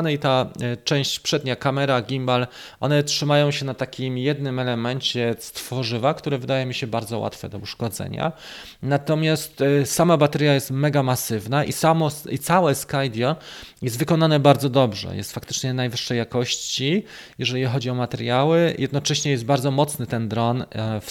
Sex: male